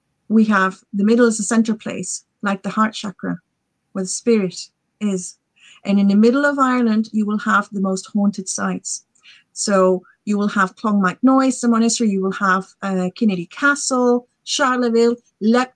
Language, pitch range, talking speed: English, 190-225 Hz, 170 wpm